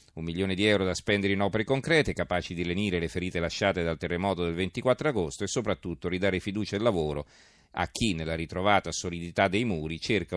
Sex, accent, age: male, native, 40-59